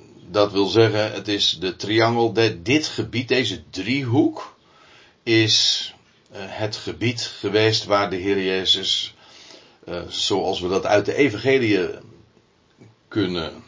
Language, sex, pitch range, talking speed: Dutch, male, 95-115 Hz, 110 wpm